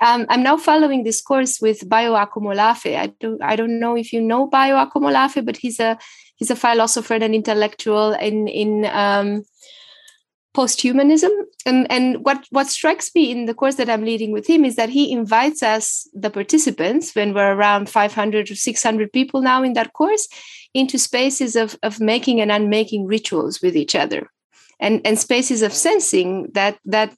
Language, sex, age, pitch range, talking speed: English, female, 20-39, 215-270 Hz, 180 wpm